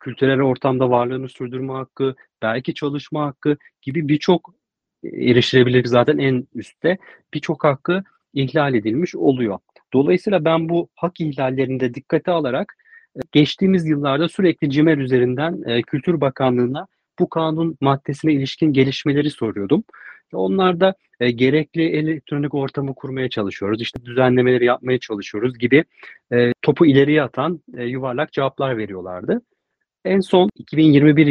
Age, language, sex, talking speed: 40-59, Turkish, male, 125 wpm